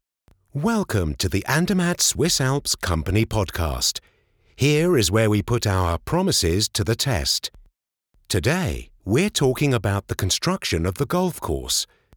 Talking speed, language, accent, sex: 140 wpm, English, British, male